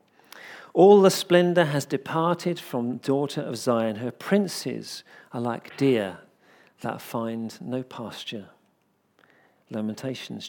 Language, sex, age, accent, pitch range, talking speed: English, male, 50-69, British, 120-165 Hz, 110 wpm